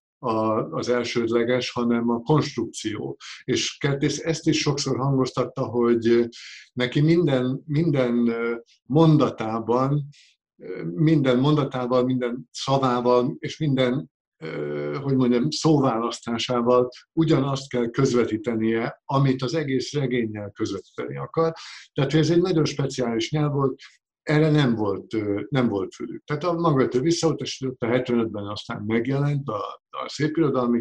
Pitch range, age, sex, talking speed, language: 115-145 Hz, 60-79, male, 115 wpm, Hungarian